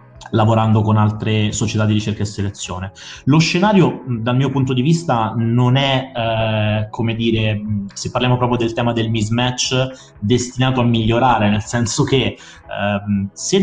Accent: native